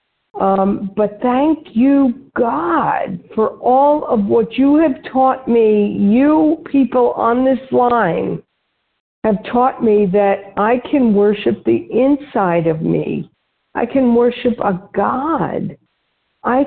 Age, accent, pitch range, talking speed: 50-69, American, 205-260 Hz, 125 wpm